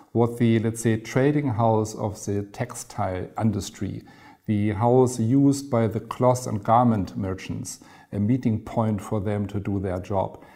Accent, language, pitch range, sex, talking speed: German, English, 105-125 Hz, male, 160 wpm